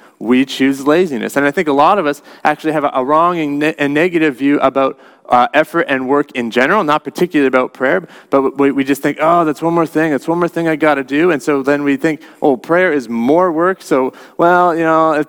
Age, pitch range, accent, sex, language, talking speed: 30-49, 140-185 Hz, American, male, English, 235 wpm